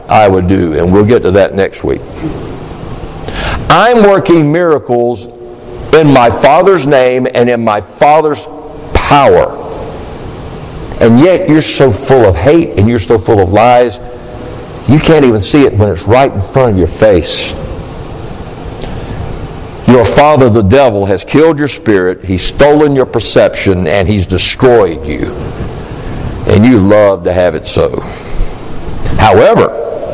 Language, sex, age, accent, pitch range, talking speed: English, male, 60-79, American, 110-165 Hz, 145 wpm